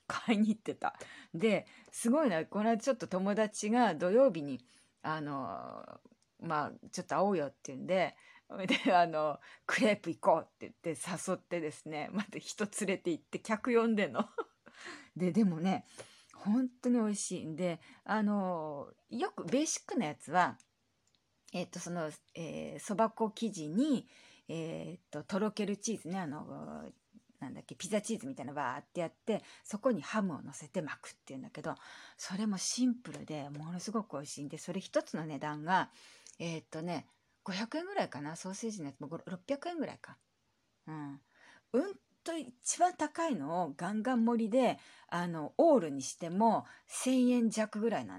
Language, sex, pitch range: Japanese, female, 160-230 Hz